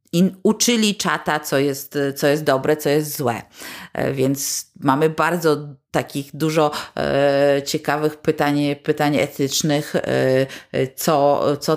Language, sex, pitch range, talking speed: Polish, female, 135-150 Hz, 120 wpm